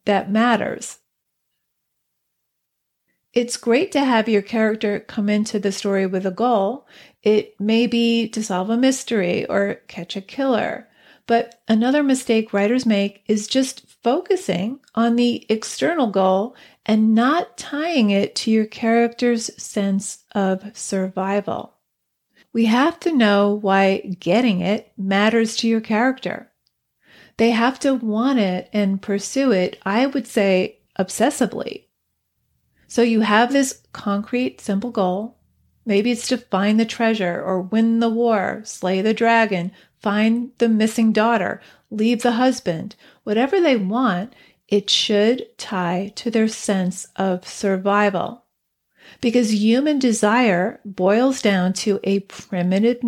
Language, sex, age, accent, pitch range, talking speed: English, female, 40-59, American, 195-235 Hz, 130 wpm